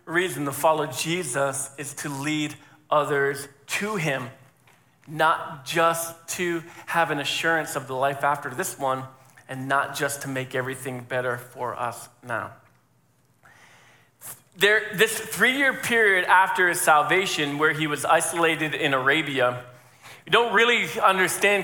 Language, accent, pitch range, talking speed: English, American, 150-205 Hz, 140 wpm